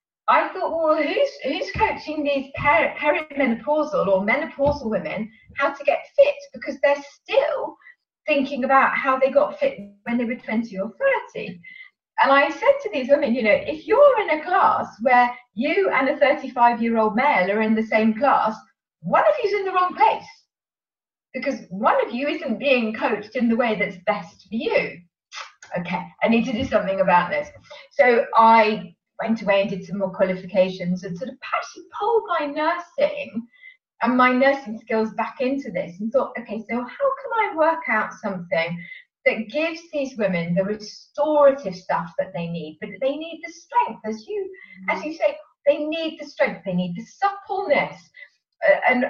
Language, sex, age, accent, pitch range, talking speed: English, female, 30-49, British, 210-295 Hz, 175 wpm